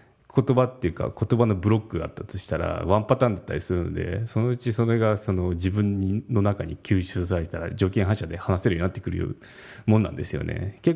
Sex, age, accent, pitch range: male, 30-49, native, 90-120 Hz